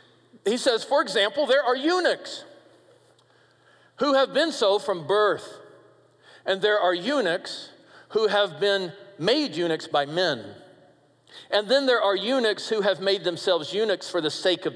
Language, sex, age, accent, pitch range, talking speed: English, male, 50-69, American, 155-210 Hz, 155 wpm